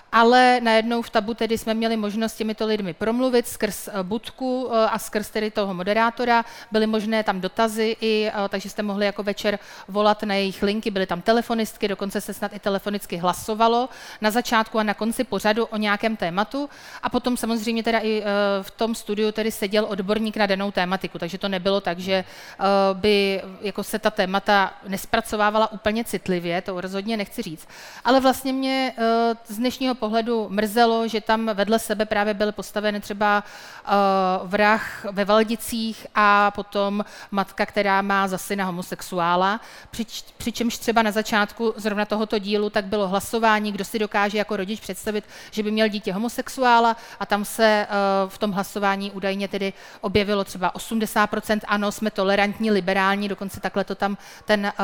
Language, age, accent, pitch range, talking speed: Czech, 40-59, native, 200-225 Hz, 165 wpm